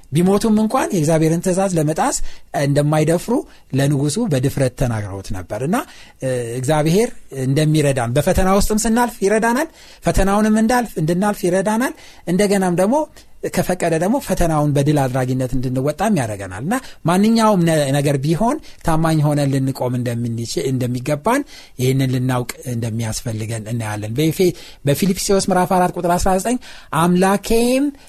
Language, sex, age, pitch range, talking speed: Amharic, male, 60-79, 135-205 Hz, 95 wpm